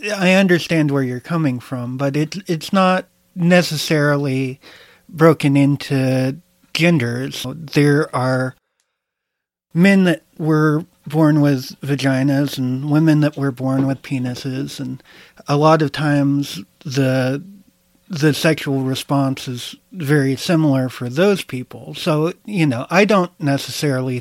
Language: English